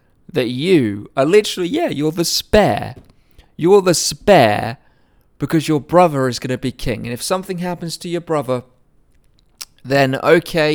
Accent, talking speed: British, 155 wpm